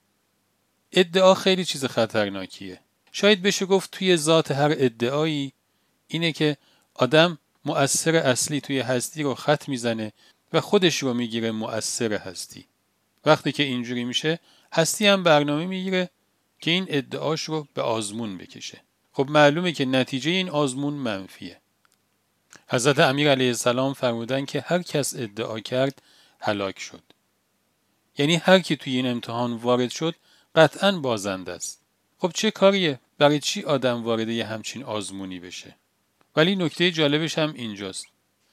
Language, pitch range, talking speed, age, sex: Persian, 115-155 Hz, 135 wpm, 40-59, male